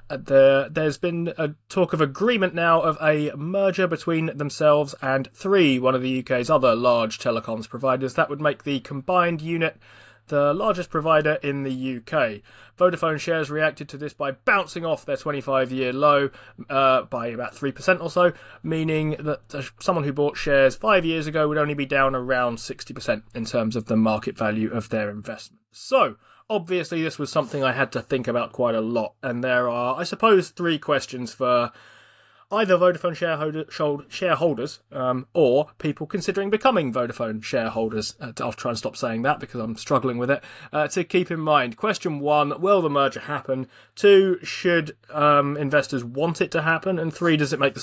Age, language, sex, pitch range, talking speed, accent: 30-49, English, male, 125-165 Hz, 180 wpm, British